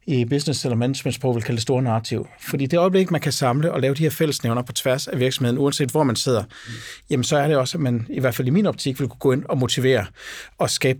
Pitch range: 125-155 Hz